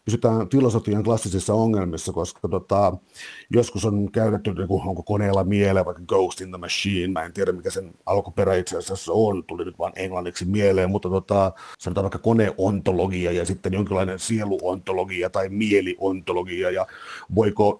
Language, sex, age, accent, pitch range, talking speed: Finnish, male, 50-69, native, 95-110 Hz, 150 wpm